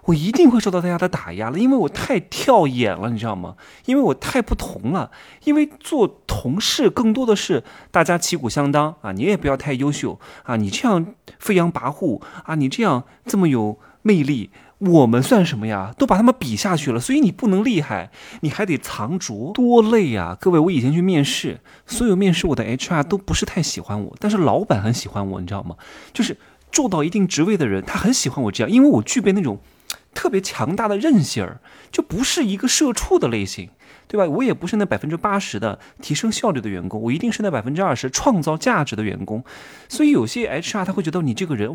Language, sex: Chinese, male